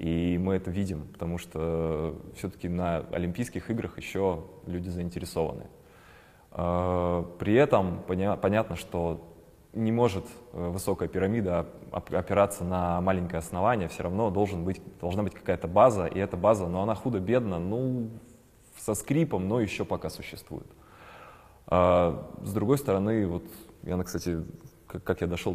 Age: 20-39